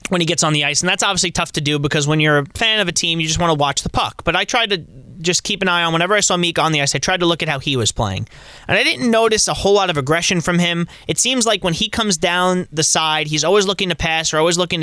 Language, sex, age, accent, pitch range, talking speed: English, male, 30-49, American, 140-180 Hz, 325 wpm